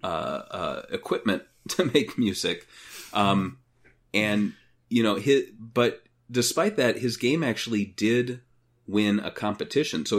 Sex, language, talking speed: male, English, 125 wpm